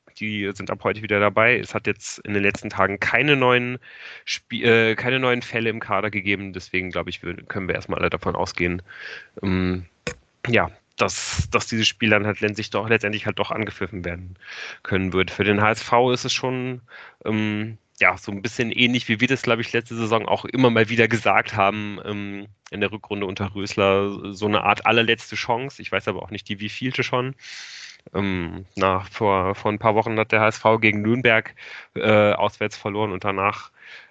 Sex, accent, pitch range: male, German, 100-115 Hz